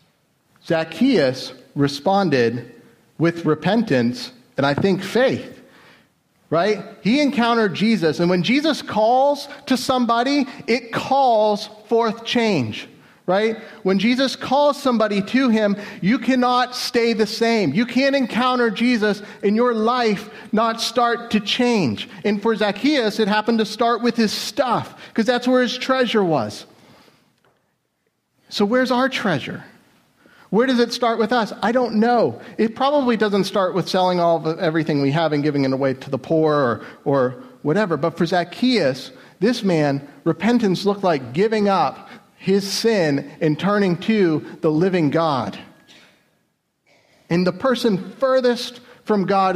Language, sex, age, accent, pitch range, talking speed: English, male, 40-59, American, 180-240 Hz, 145 wpm